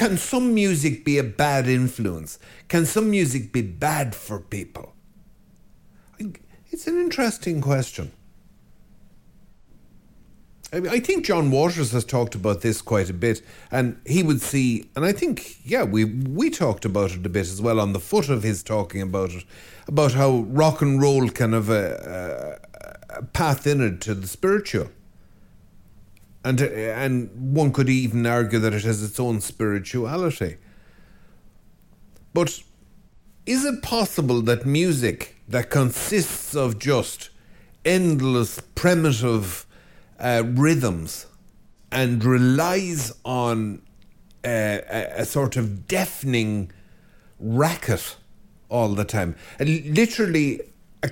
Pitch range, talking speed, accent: 110-155 Hz, 135 wpm, Irish